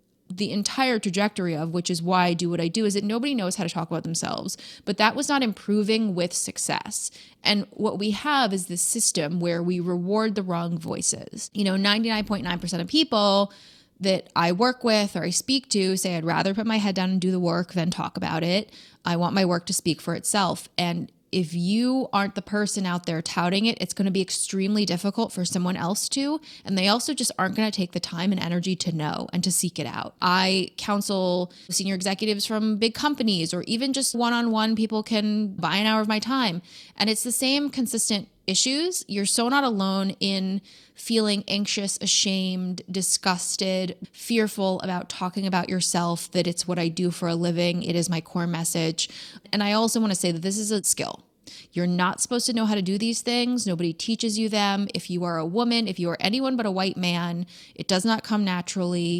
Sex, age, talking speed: female, 20-39, 210 wpm